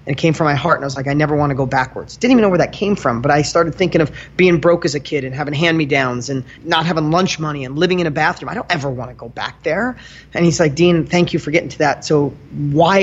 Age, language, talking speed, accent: 30-49, English, 315 wpm, American